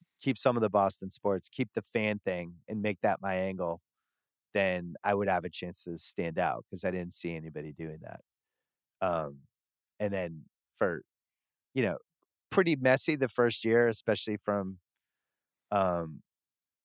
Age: 30-49